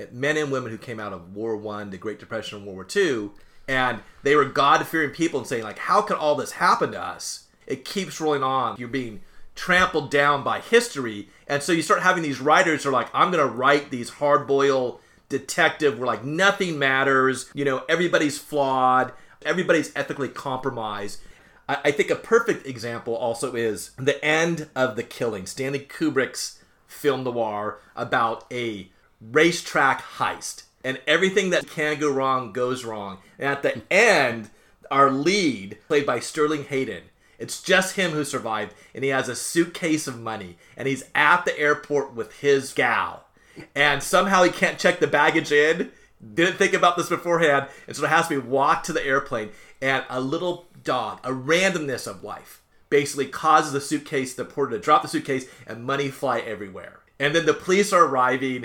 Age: 30-49